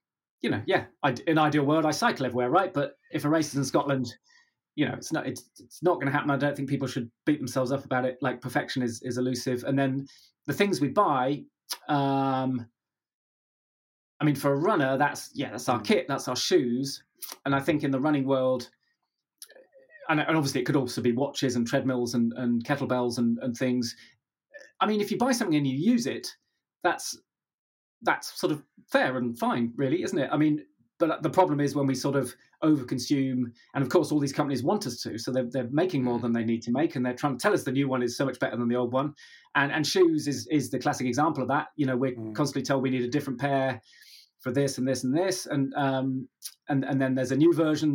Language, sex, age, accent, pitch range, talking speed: English, male, 30-49, British, 130-150 Hz, 235 wpm